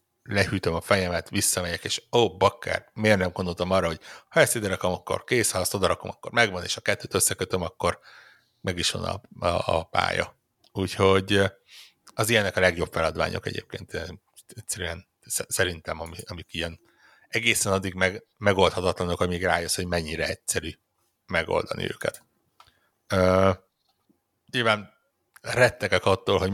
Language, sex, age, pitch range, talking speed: Hungarian, male, 60-79, 85-105 Hz, 140 wpm